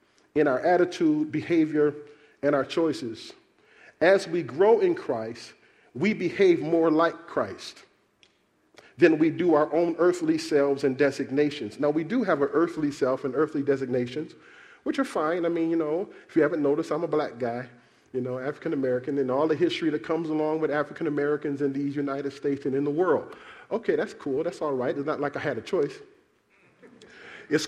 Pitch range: 135-170 Hz